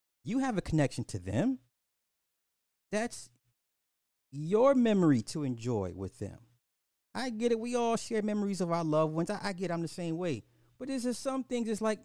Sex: male